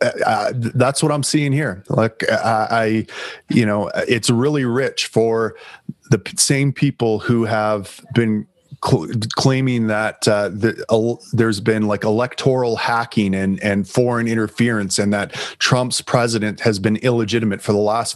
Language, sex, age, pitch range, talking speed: English, male, 30-49, 110-125 Hz, 150 wpm